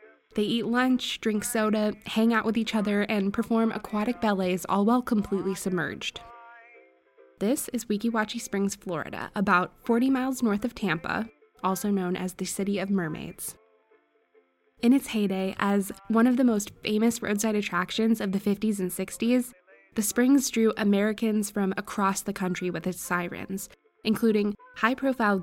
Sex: female